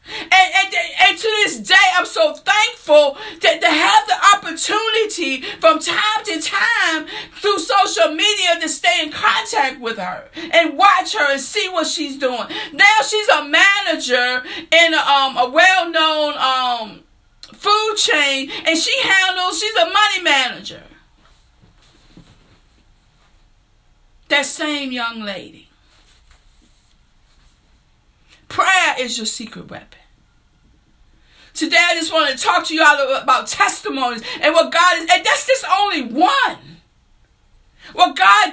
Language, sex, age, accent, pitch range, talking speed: English, female, 50-69, American, 295-395 Hz, 130 wpm